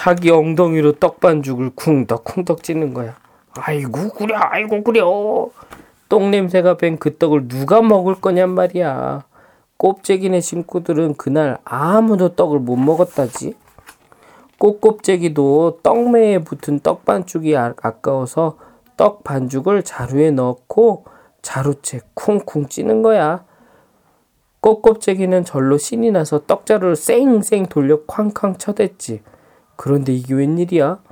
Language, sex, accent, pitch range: Korean, male, native, 135-190 Hz